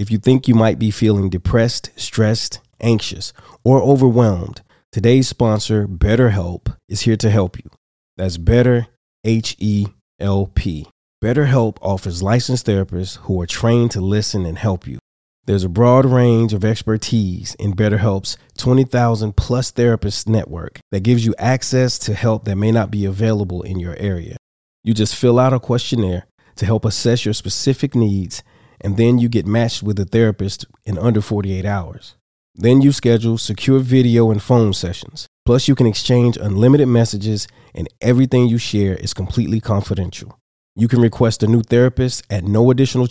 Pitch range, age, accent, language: 100-120 Hz, 30-49, American, English